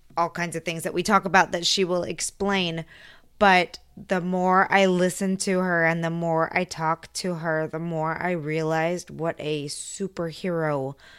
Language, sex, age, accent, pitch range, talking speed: English, female, 20-39, American, 150-175 Hz, 175 wpm